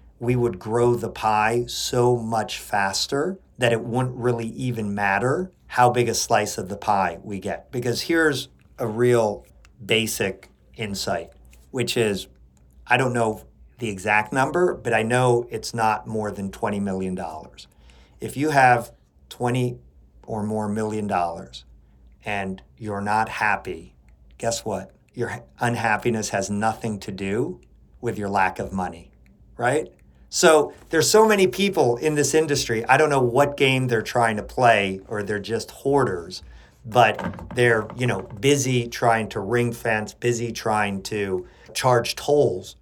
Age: 50-69